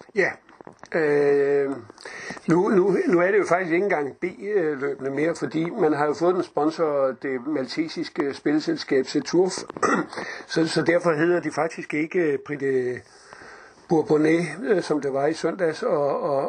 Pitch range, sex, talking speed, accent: 145-180 Hz, male, 145 wpm, native